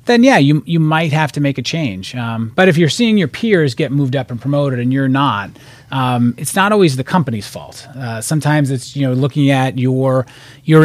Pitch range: 125-155 Hz